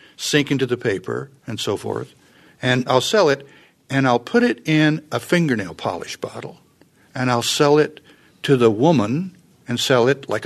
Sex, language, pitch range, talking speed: male, English, 120-150 Hz, 180 wpm